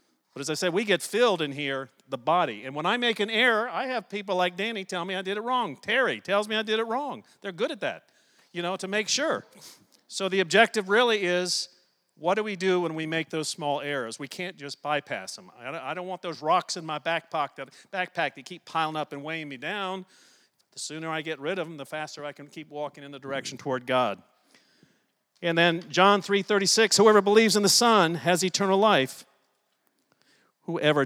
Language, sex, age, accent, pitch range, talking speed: English, male, 50-69, American, 150-210 Hz, 215 wpm